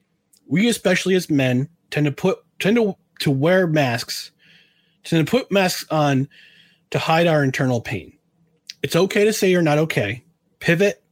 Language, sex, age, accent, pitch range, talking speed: English, male, 30-49, American, 140-175 Hz, 160 wpm